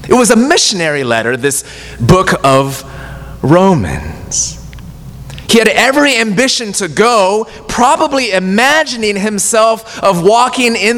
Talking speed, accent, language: 115 wpm, American, English